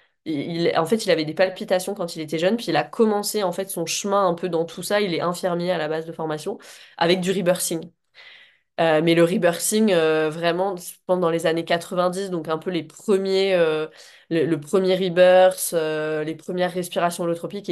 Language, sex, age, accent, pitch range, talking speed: French, female, 20-39, French, 165-195 Hz, 205 wpm